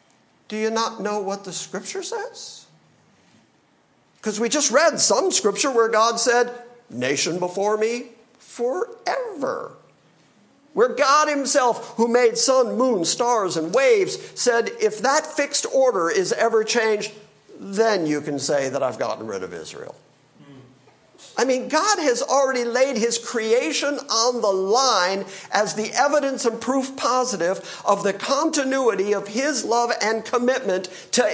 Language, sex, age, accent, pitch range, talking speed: English, male, 50-69, American, 195-295 Hz, 145 wpm